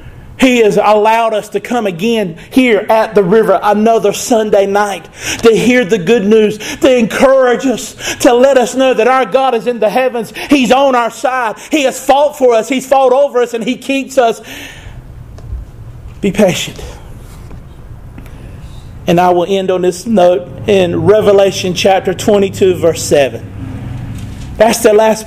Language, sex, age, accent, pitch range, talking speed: English, male, 40-59, American, 180-240 Hz, 160 wpm